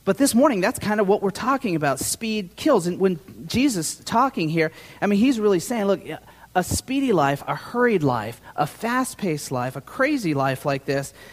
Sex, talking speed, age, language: male, 200 wpm, 40-59, English